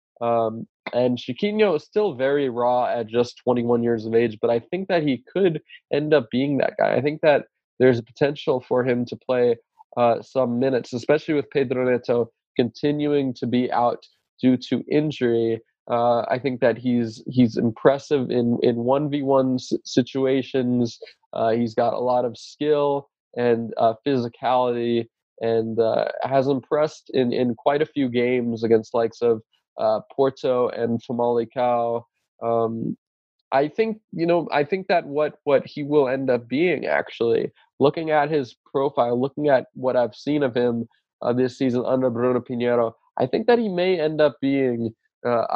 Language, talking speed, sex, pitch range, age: English, 170 wpm, male, 120-145 Hz, 20-39